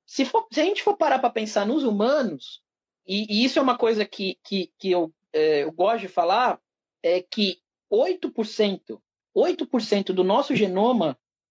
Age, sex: 40-59, male